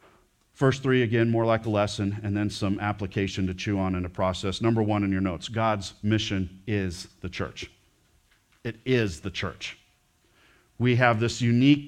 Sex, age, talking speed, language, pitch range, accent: male, 40-59, 175 wpm, English, 110-150 Hz, American